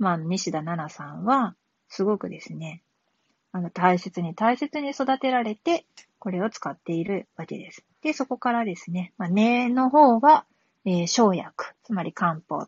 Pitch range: 175-255 Hz